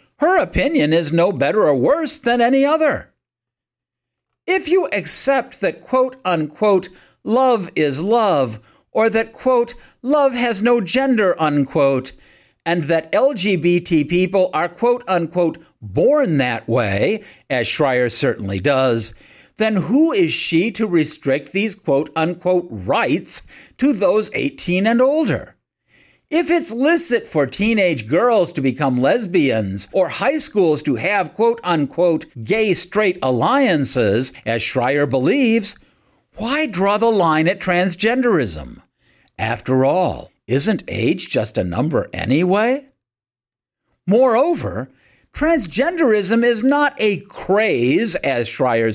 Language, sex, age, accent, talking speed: English, male, 50-69, American, 120 wpm